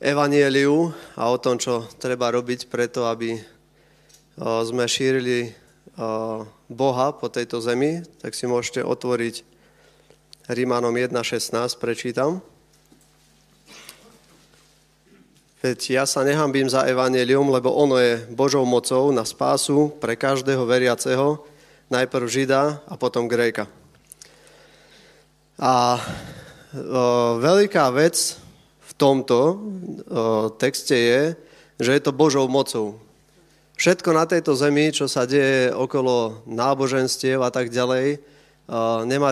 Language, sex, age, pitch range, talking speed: Slovak, male, 20-39, 120-140 Hz, 105 wpm